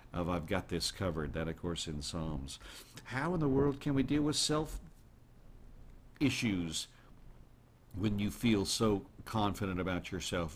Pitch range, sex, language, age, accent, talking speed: 90-140 Hz, male, English, 50-69, American, 155 wpm